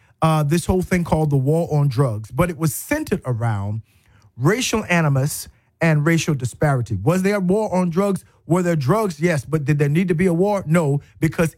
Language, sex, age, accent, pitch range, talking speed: English, male, 40-59, American, 135-175 Hz, 200 wpm